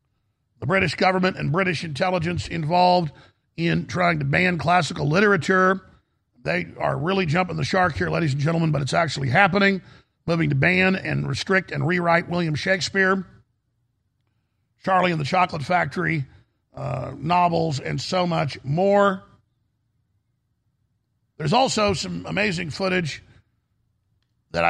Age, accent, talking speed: 50-69, American, 130 wpm